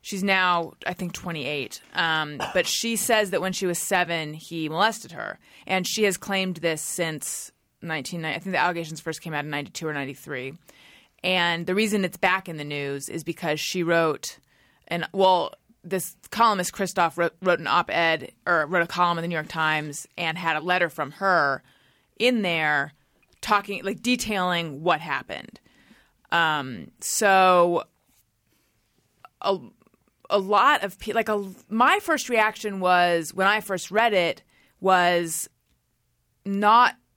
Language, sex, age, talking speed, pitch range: English, female, 30-49, 155 wpm, 160-195 Hz